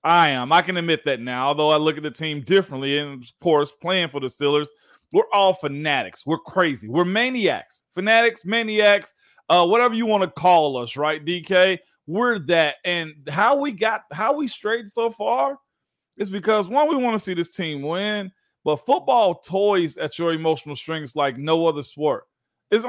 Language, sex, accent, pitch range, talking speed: English, male, American, 155-200 Hz, 190 wpm